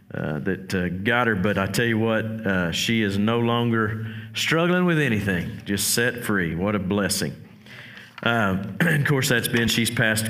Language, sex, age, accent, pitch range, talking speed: English, male, 50-69, American, 105-135 Hz, 185 wpm